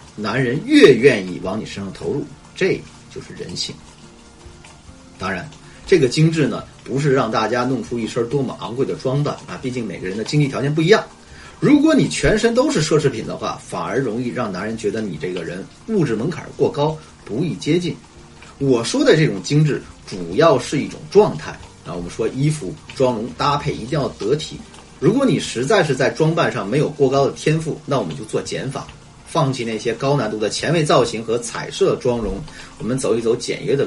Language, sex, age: Chinese, male, 30-49